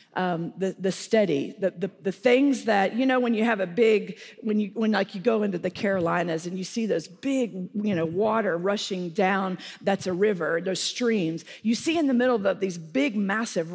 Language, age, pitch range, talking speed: English, 40-59, 190-245 Hz, 215 wpm